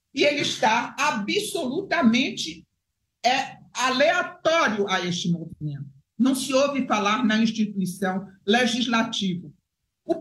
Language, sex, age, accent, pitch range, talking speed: Portuguese, male, 60-79, Brazilian, 190-285 Hz, 95 wpm